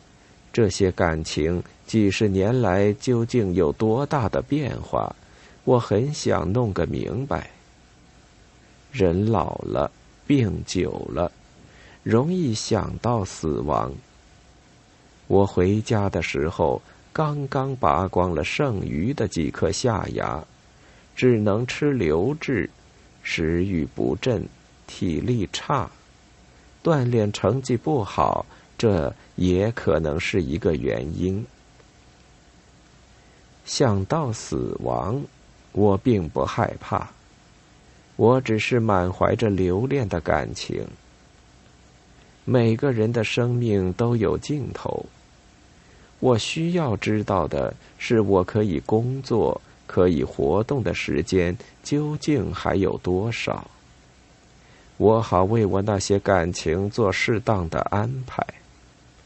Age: 50-69